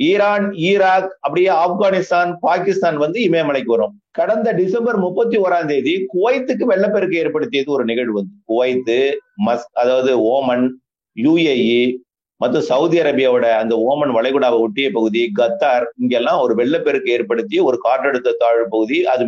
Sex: male